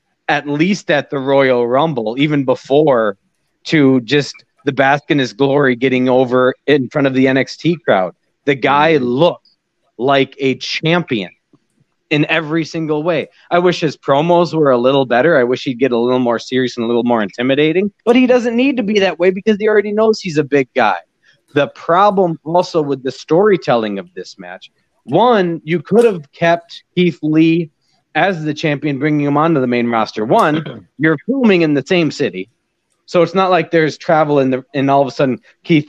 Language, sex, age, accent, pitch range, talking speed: English, male, 40-59, American, 125-170 Hz, 195 wpm